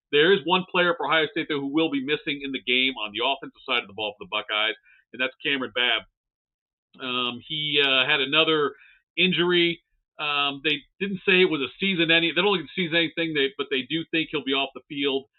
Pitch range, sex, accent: 130-170 Hz, male, American